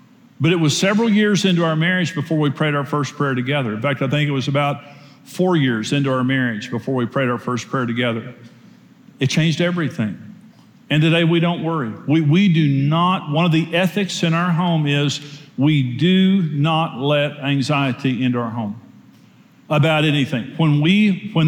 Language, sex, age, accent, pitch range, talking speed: English, male, 50-69, American, 120-165 Hz, 185 wpm